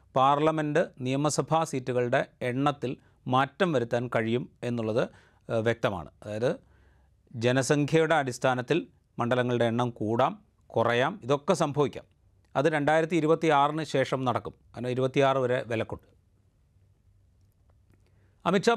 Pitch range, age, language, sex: 115-150 Hz, 30-49, Malayalam, male